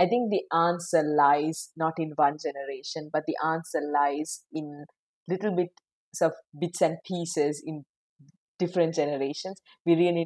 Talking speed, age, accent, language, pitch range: 145 wpm, 30-49, Indian, English, 150-180 Hz